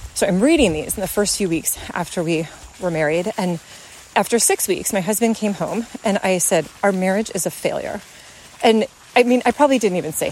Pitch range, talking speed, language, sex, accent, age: 180-260 Hz, 215 wpm, English, female, American, 30-49